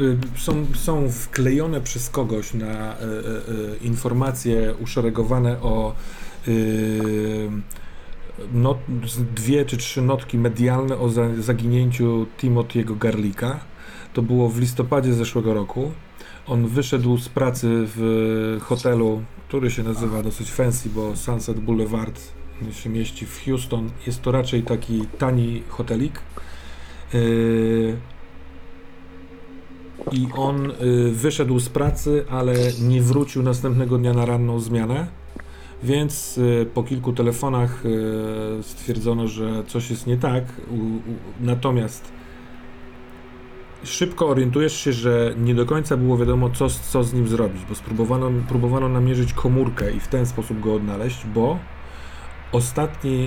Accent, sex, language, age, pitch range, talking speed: native, male, Polish, 40-59, 110-125 Hz, 125 wpm